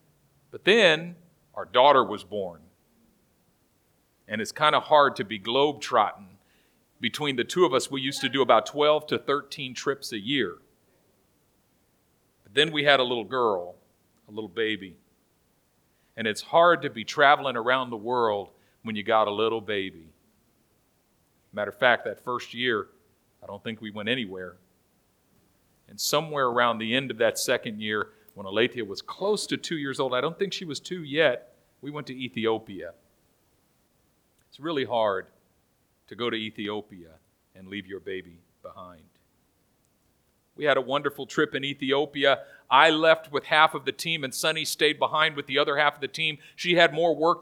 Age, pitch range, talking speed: 50-69, 110-155 Hz, 170 wpm